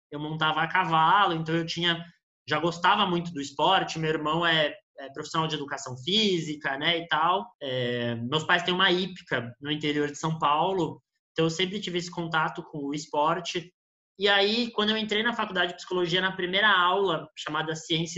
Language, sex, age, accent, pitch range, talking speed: Portuguese, male, 20-39, Brazilian, 160-200 Hz, 190 wpm